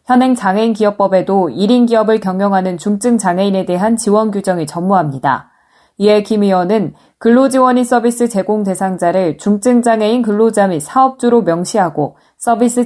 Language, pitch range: Korean, 185-235 Hz